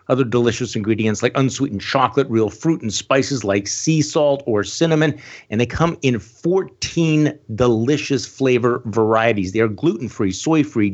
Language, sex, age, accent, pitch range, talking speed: English, male, 50-69, American, 105-140 Hz, 150 wpm